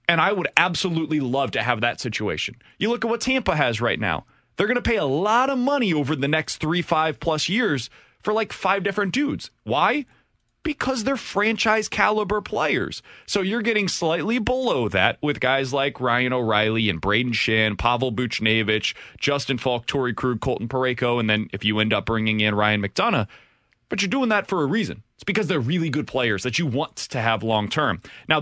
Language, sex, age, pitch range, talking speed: English, male, 30-49, 120-205 Hz, 200 wpm